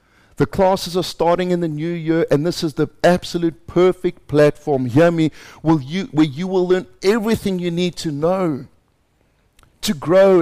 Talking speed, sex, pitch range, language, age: 155 wpm, male, 125-180 Hz, English, 50-69